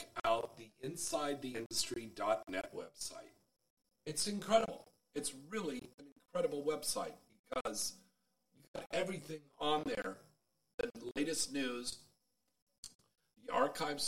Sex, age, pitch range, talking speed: male, 40-59, 120-155 Hz, 100 wpm